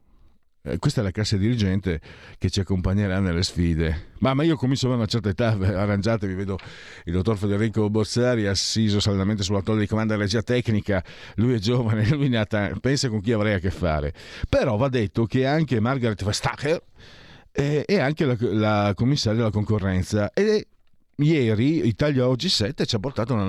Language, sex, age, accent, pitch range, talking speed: Italian, male, 50-69, native, 95-125 Hz, 175 wpm